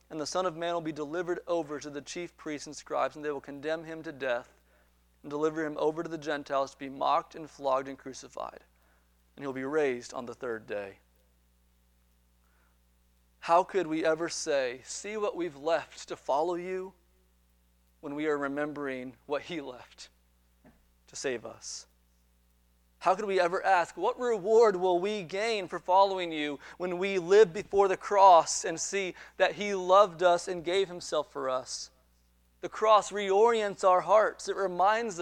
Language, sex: English, male